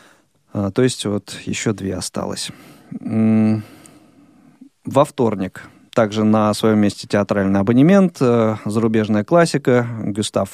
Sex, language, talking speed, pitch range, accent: male, Russian, 95 wpm, 110-135 Hz, native